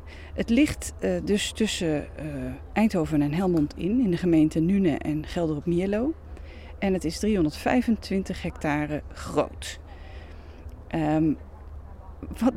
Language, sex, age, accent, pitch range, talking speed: Dutch, female, 40-59, Dutch, 145-220 Hz, 125 wpm